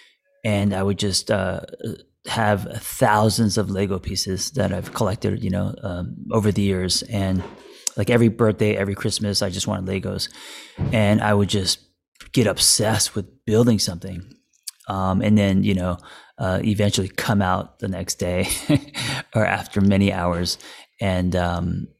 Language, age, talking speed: English, 30-49, 155 wpm